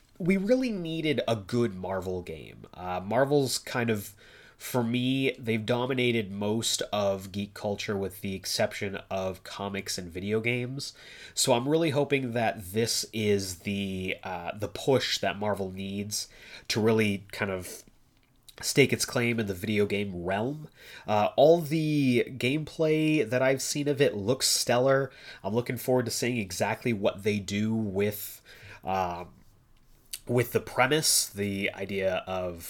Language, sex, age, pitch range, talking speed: English, male, 30-49, 100-125 Hz, 150 wpm